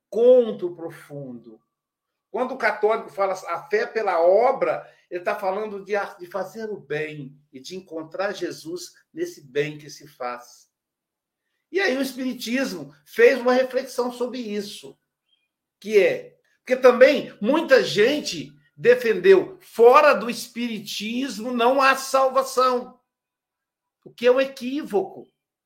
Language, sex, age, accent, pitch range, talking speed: Portuguese, male, 60-79, Brazilian, 170-255 Hz, 125 wpm